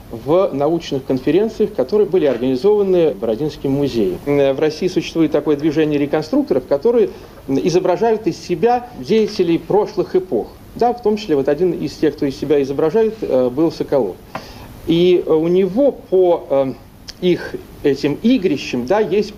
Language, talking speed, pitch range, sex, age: Russian, 125 wpm, 140-200 Hz, male, 40-59